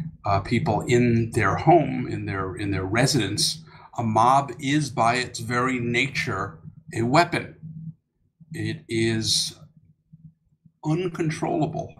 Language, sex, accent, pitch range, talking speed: English, male, American, 115-155 Hz, 110 wpm